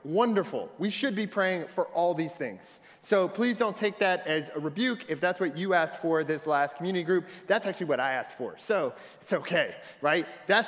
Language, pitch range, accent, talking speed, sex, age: English, 165-215 Hz, American, 215 wpm, male, 30-49